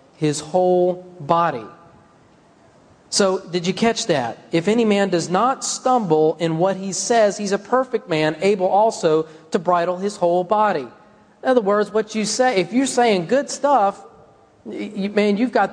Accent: American